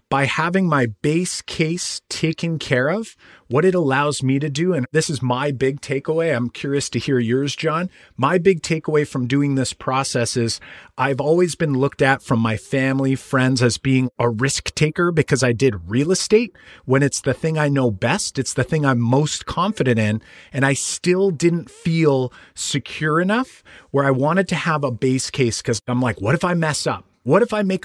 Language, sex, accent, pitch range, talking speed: English, male, American, 125-160 Hz, 205 wpm